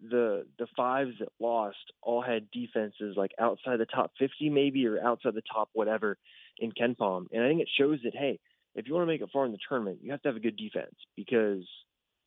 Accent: American